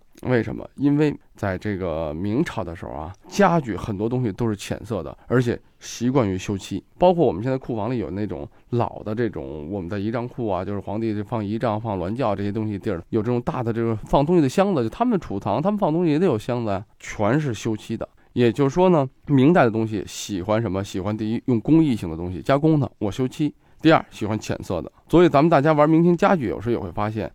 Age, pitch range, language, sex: 20-39, 100-135 Hz, Chinese, male